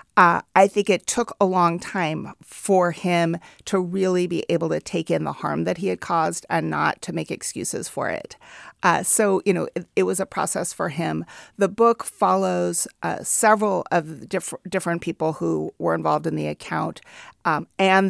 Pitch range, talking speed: 160-190 Hz, 195 wpm